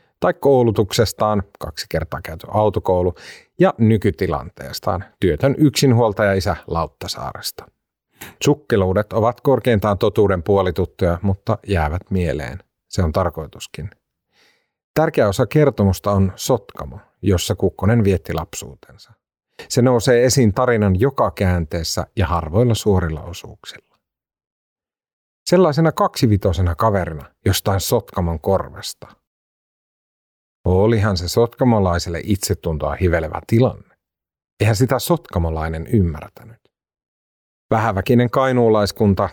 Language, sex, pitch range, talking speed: Finnish, male, 90-115 Hz, 90 wpm